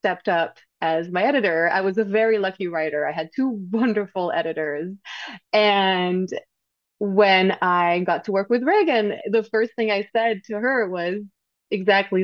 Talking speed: 160 wpm